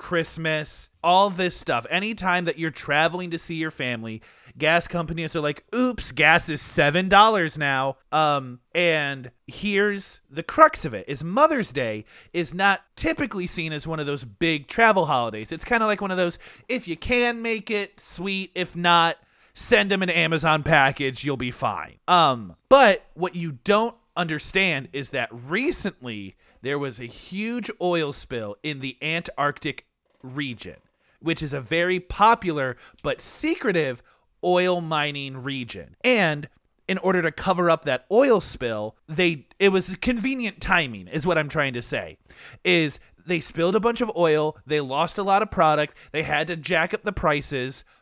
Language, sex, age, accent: English, male, 30-49, American